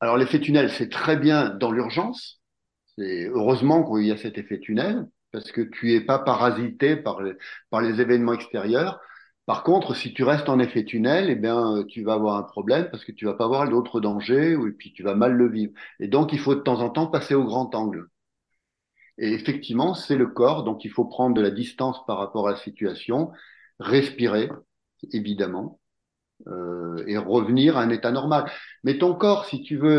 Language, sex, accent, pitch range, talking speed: French, male, French, 115-150 Hz, 205 wpm